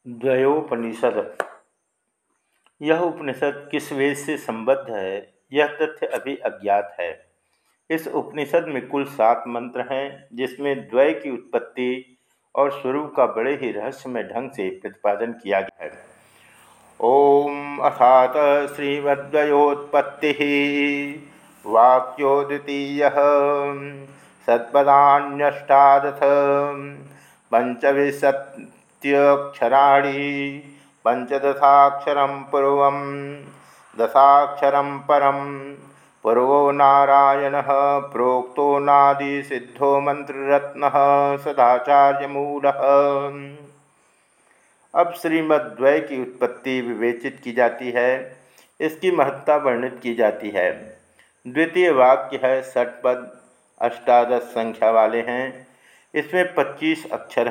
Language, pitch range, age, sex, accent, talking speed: Hindi, 130-145 Hz, 50-69, male, native, 80 wpm